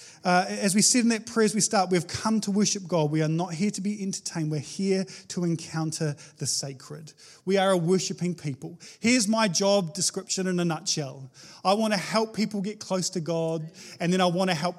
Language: English